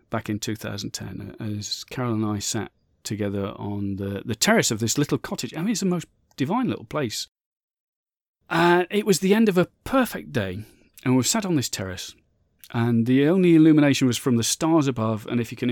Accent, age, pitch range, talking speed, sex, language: British, 40-59, 110-145 Hz, 200 wpm, male, English